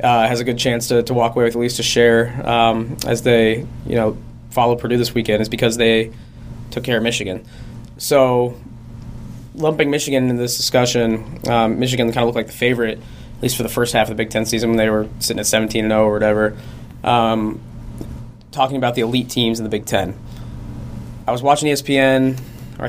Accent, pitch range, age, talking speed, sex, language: American, 115-130 Hz, 20-39, 205 wpm, male, English